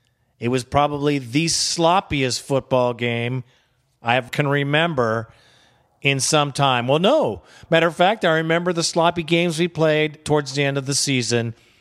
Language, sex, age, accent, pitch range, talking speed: English, male, 40-59, American, 125-170 Hz, 160 wpm